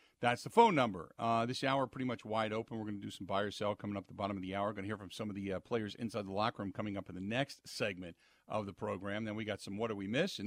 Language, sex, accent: English, male, American